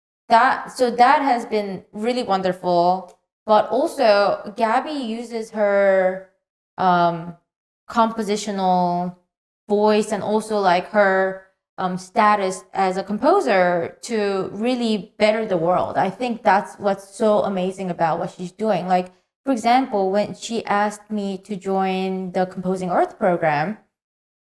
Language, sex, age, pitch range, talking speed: English, female, 20-39, 185-215 Hz, 125 wpm